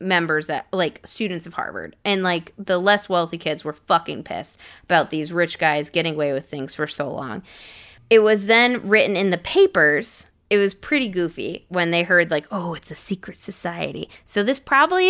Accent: American